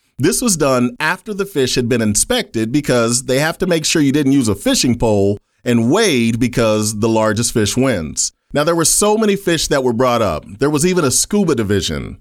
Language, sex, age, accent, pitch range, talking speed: English, male, 30-49, American, 120-185 Hz, 215 wpm